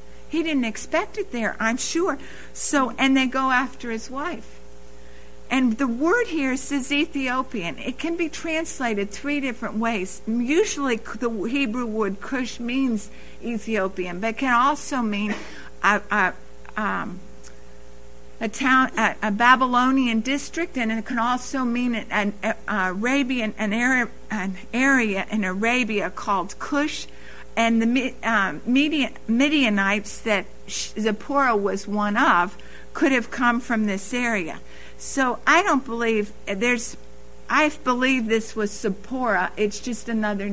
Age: 60-79